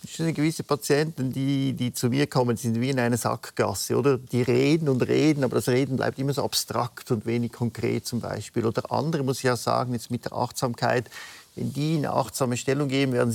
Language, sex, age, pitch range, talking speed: German, male, 50-69, 120-140 Hz, 220 wpm